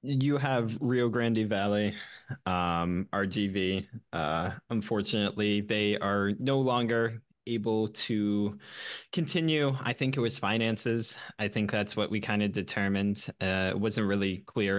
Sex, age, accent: male, 20-39, American